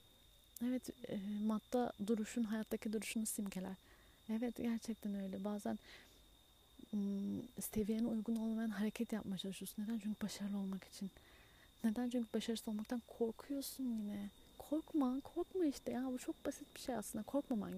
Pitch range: 205-245 Hz